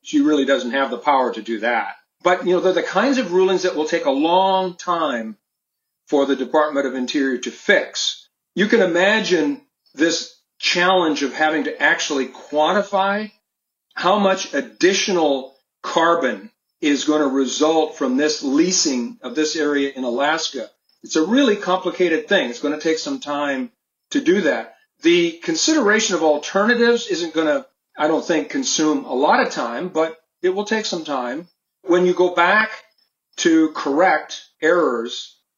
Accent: American